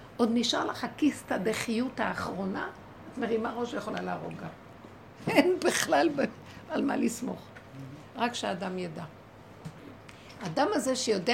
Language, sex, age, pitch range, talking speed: Hebrew, female, 60-79, 225-300 Hz, 115 wpm